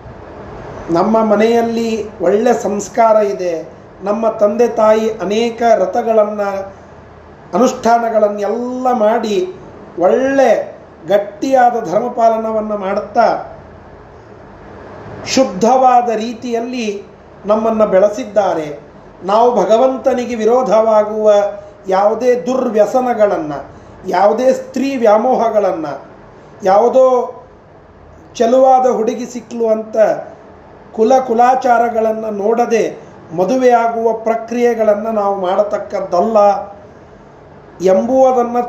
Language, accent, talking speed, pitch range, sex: Kannada, native, 60 wpm, 200-245 Hz, male